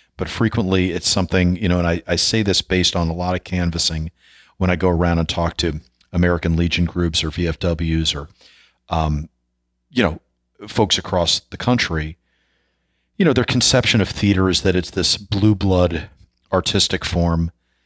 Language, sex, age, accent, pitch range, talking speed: English, male, 40-59, American, 80-95 Hz, 170 wpm